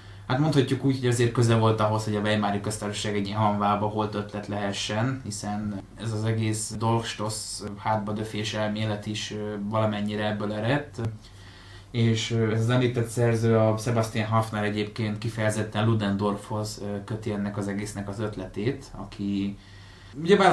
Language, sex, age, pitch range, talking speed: Hungarian, male, 20-39, 100-115 Hz, 145 wpm